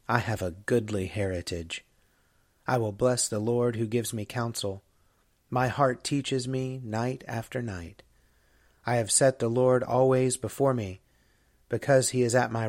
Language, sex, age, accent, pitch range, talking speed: English, male, 30-49, American, 100-125 Hz, 160 wpm